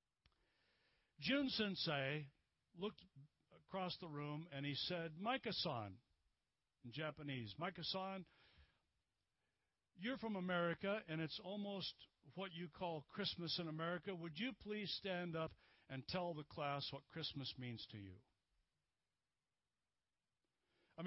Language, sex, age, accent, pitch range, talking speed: English, male, 60-79, American, 125-200 Hz, 115 wpm